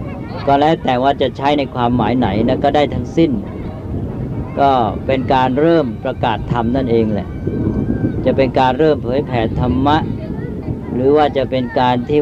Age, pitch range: 60-79, 115-135 Hz